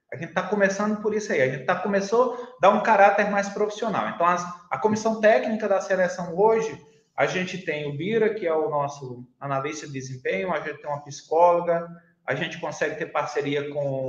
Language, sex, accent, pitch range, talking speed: Portuguese, male, Brazilian, 155-220 Hz, 195 wpm